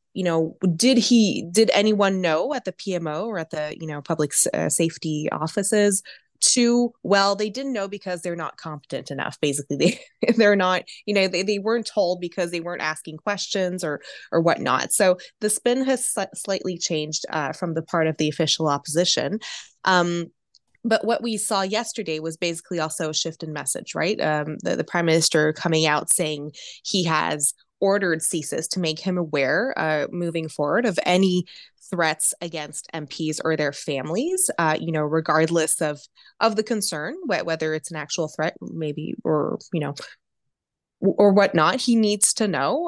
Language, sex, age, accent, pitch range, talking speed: English, female, 20-39, American, 155-200 Hz, 180 wpm